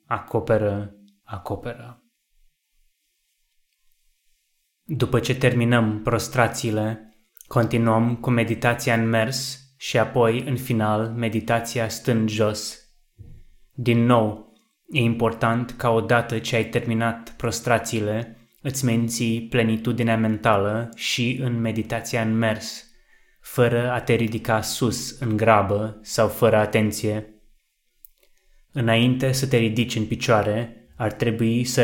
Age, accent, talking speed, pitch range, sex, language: 20-39, native, 105 wpm, 110-120 Hz, male, Romanian